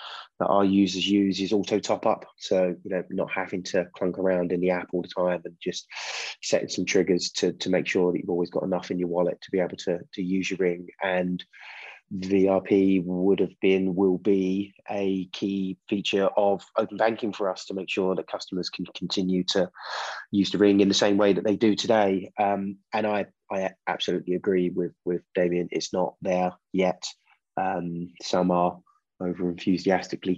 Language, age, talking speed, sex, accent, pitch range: English, 20-39, 195 wpm, male, British, 90-100 Hz